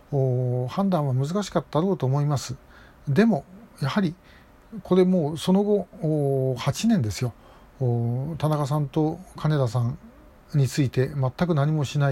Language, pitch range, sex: Japanese, 135-190 Hz, male